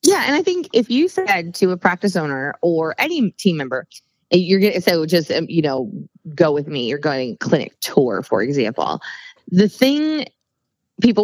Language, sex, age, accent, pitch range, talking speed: English, female, 20-39, American, 155-200 Hz, 185 wpm